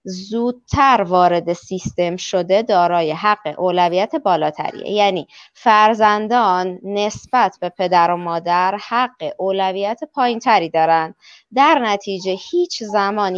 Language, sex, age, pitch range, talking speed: Italian, female, 20-39, 185-235 Hz, 110 wpm